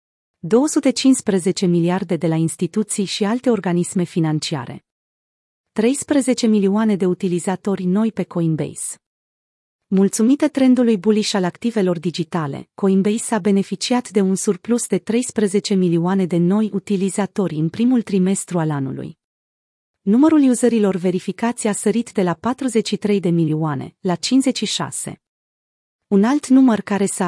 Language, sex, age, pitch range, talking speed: Romanian, female, 30-49, 175-225 Hz, 125 wpm